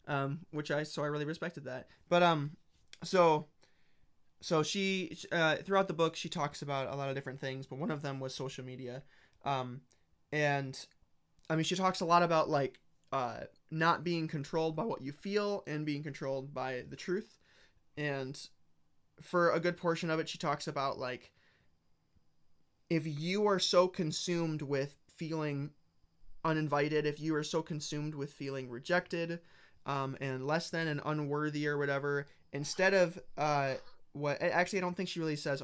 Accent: American